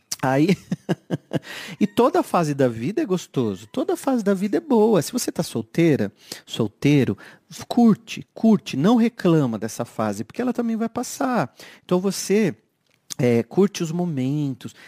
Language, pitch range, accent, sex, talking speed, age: Portuguese, 130-215 Hz, Brazilian, male, 145 wpm, 40-59